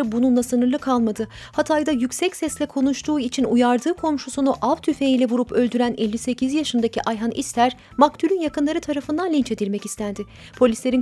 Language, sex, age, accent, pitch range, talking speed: Turkish, female, 30-49, native, 235-285 Hz, 135 wpm